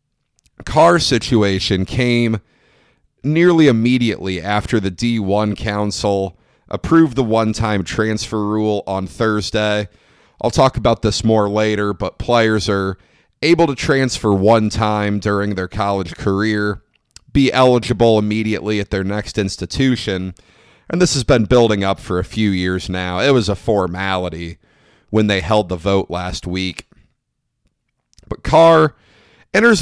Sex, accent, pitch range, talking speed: male, American, 100-130 Hz, 135 wpm